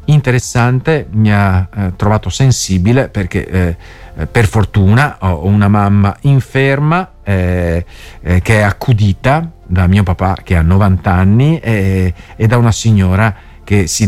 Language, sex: Italian, male